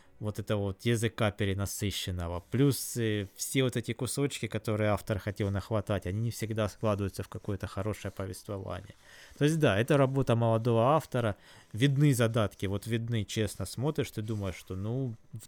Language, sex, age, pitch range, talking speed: Russian, male, 20-39, 100-125 Hz, 155 wpm